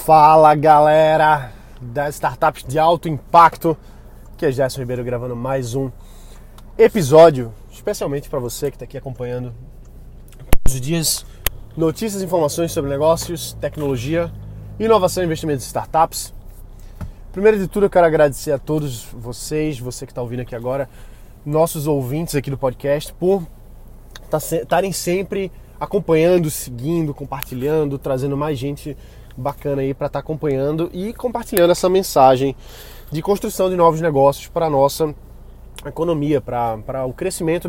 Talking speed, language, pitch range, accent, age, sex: 135 wpm, Portuguese, 125-165 Hz, Brazilian, 20-39, male